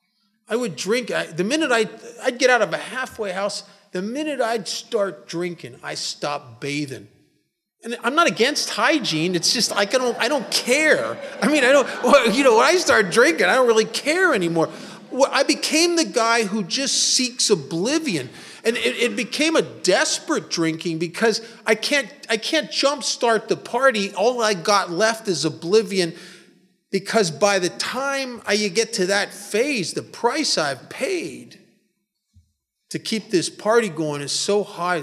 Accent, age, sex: American, 40-59, male